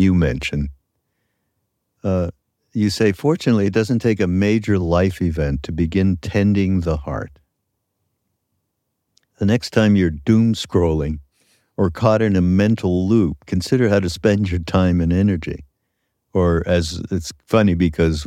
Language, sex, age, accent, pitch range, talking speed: English, male, 60-79, American, 85-110 Hz, 140 wpm